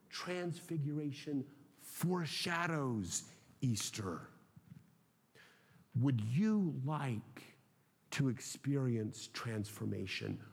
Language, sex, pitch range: English, male, 125-165 Hz